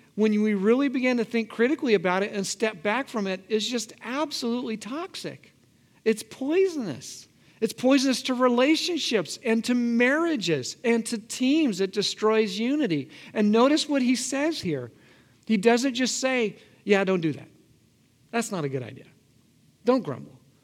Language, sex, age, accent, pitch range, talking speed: English, male, 50-69, American, 170-250 Hz, 155 wpm